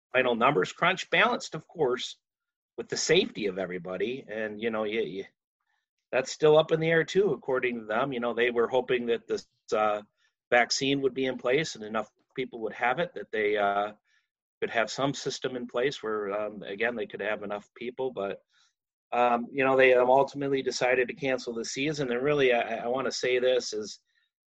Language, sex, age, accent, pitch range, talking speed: English, male, 30-49, American, 100-135 Hz, 195 wpm